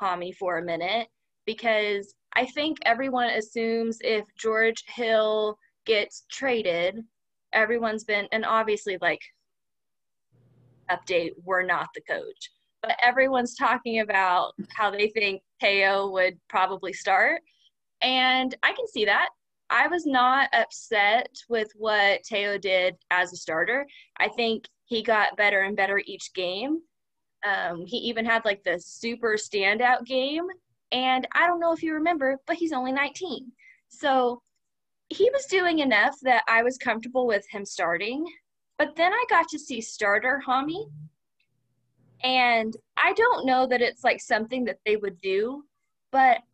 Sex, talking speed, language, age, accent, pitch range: female, 145 wpm, English, 20-39, American, 195-265 Hz